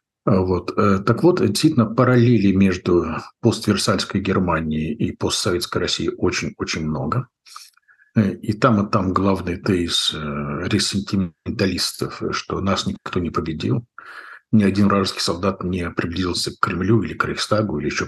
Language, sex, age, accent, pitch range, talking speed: Russian, male, 50-69, native, 95-115 Hz, 125 wpm